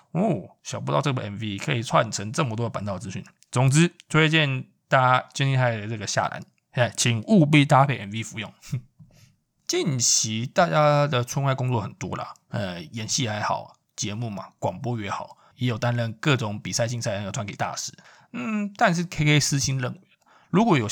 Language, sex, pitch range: Chinese, male, 110-145 Hz